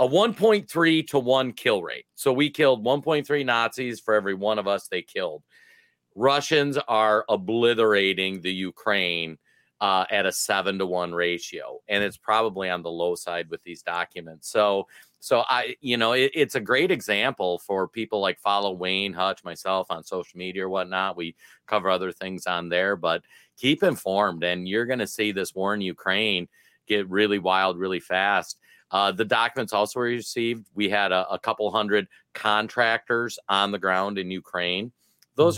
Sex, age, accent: male, 40-59, American